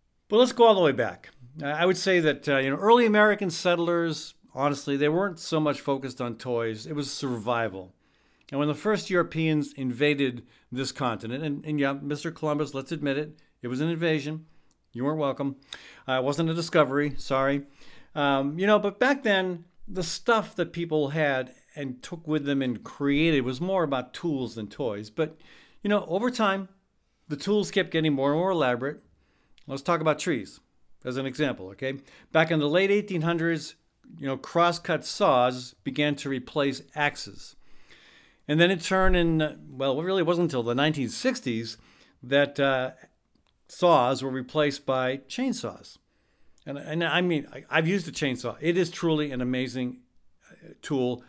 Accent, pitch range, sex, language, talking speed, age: American, 130-170 Hz, male, English, 175 wpm, 50-69